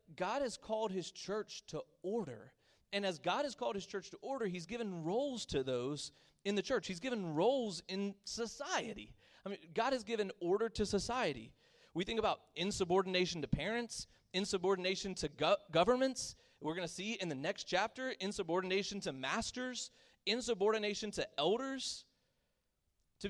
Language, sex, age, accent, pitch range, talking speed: English, male, 30-49, American, 135-200 Hz, 155 wpm